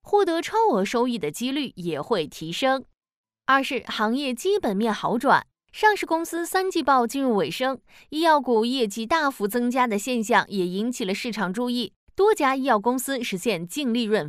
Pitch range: 215-315 Hz